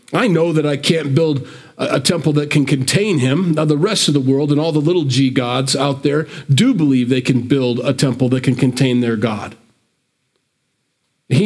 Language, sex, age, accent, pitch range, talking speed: English, male, 40-59, American, 130-160 Hz, 205 wpm